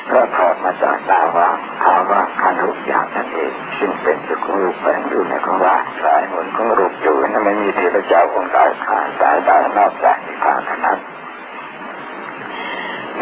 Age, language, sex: 60-79, Thai, male